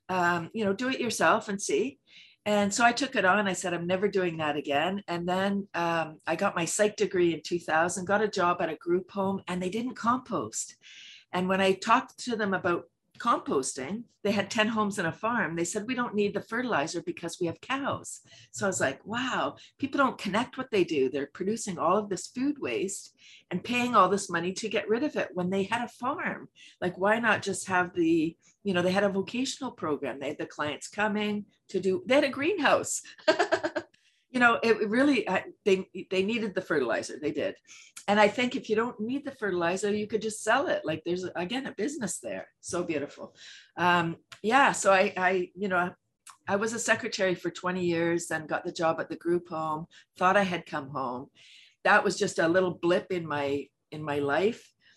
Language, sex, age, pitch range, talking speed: English, female, 50-69, 170-220 Hz, 215 wpm